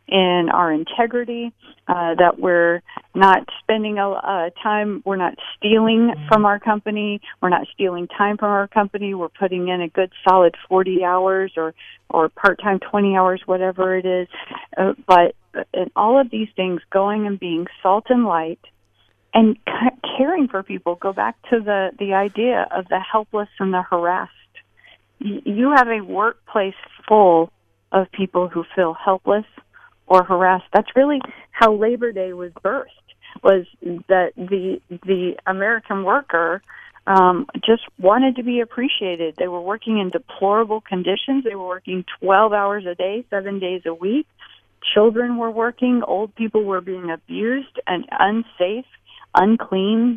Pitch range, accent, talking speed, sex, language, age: 180-225 Hz, American, 155 wpm, female, English, 40-59